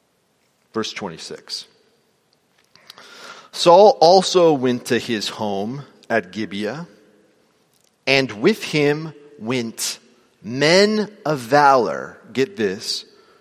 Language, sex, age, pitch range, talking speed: English, male, 40-59, 170-225 Hz, 85 wpm